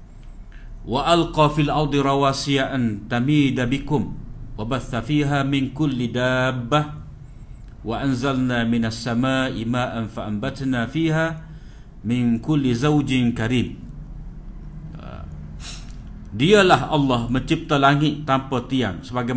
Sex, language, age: male, Malay, 50-69